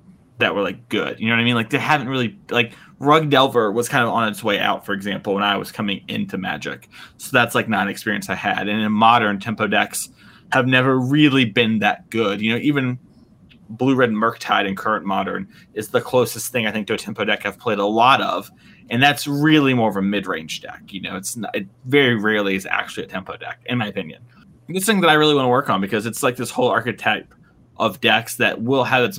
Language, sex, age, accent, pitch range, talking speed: English, male, 20-39, American, 105-125 Hz, 245 wpm